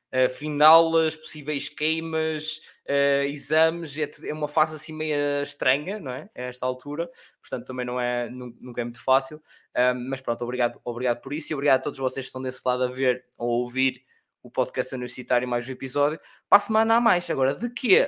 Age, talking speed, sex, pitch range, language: 20-39, 210 wpm, male, 120-155 Hz, Portuguese